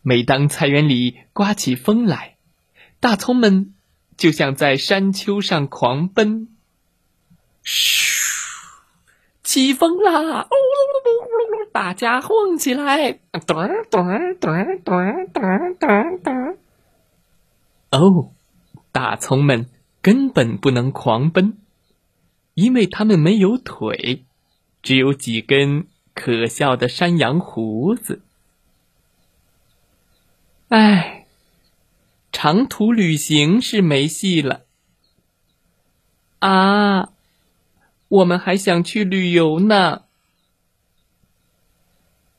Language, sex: Chinese, male